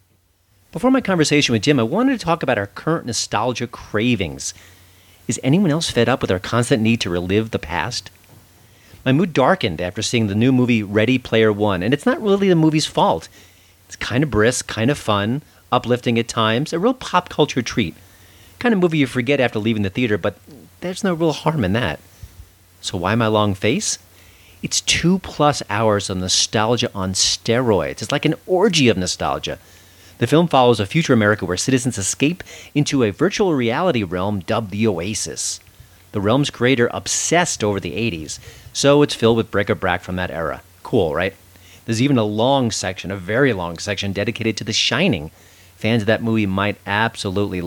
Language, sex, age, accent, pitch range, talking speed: English, male, 40-59, American, 95-135 Hz, 190 wpm